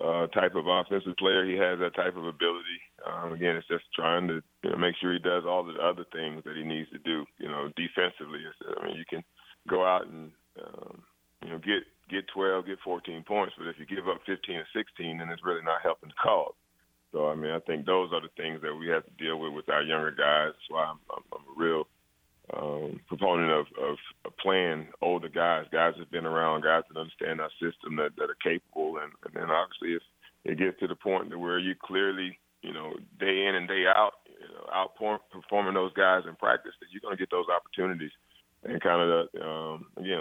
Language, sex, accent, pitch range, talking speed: English, male, American, 80-95 Hz, 225 wpm